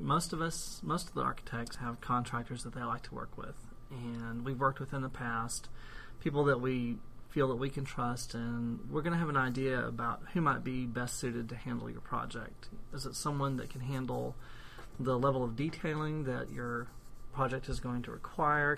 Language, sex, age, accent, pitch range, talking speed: English, male, 30-49, American, 120-140 Hz, 205 wpm